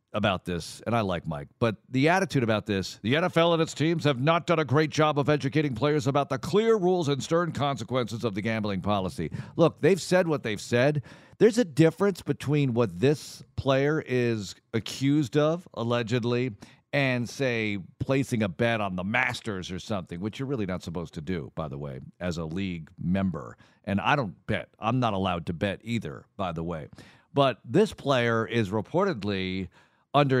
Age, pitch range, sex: 50-69, 105-150 Hz, male